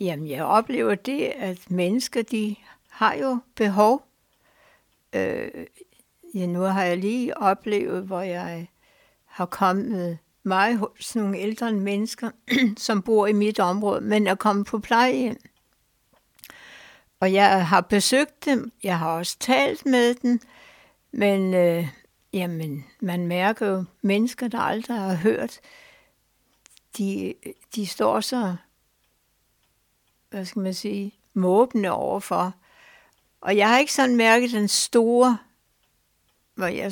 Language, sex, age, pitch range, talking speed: Danish, female, 60-79, 190-240 Hz, 125 wpm